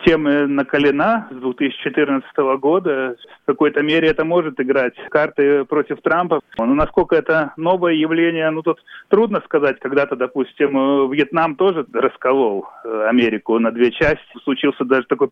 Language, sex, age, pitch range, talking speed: Russian, male, 30-49, 125-160 Hz, 135 wpm